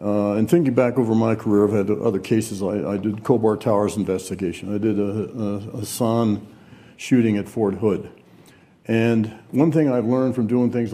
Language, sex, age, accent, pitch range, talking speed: English, male, 60-79, American, 110-130 Hz, 190 wpm